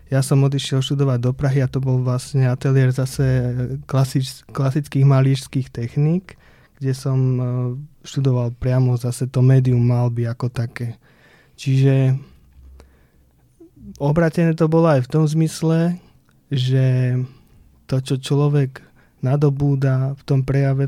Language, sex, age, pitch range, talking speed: Slovak, male, 20-39, 130-145 Hz, 125 wpm